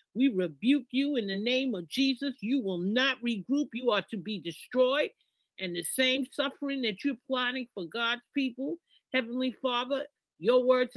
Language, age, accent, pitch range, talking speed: English, 50-69, American, 210-265 Hz, 170 wpm